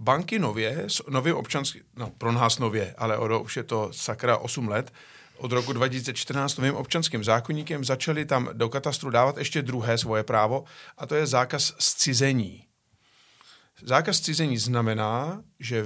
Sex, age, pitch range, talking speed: male, 50-69, 120-150 Hz, 150 wpm